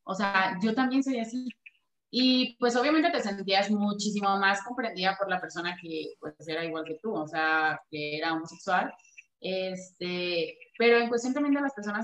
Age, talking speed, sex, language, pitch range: 20-39, 180 wpm, female, Spanish, 185-230 Hz